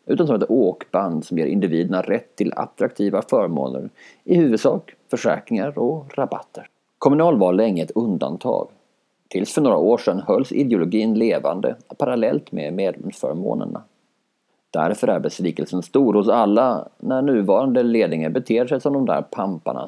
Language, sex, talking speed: Swedish, male, 140 wpm